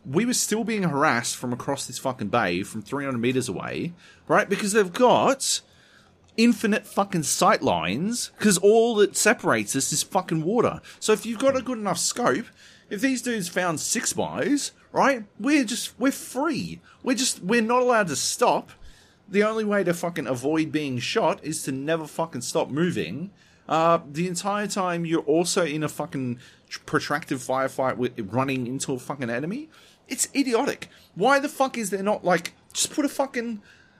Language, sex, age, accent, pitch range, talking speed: English, male, 30-49, Australian, 135-210 Hz, 175 wpm